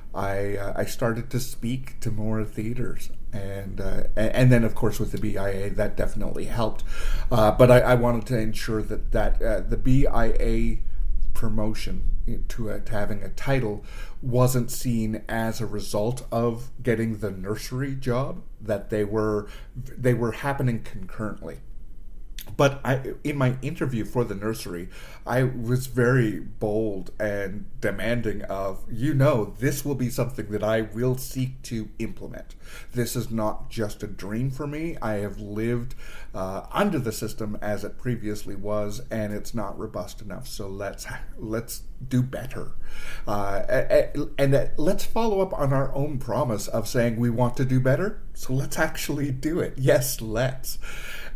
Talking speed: 160 wpm